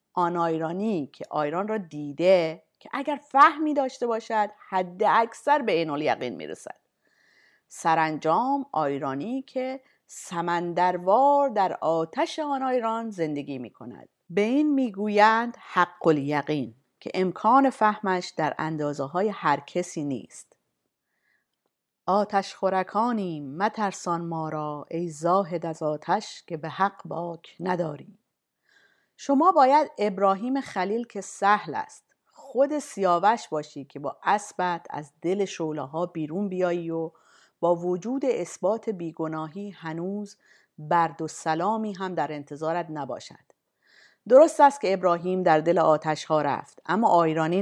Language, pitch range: Persian, 160-220 Hz